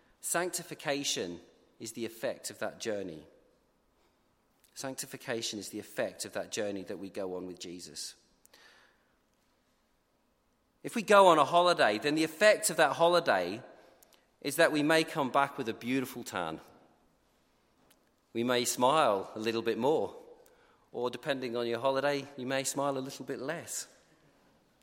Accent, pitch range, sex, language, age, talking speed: British, 125-175 Hz, male, English, 40-59, 145 wpm